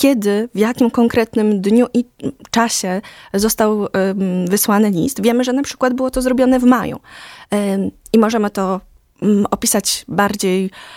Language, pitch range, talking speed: Polish, 195-250 Hz, 130 wpm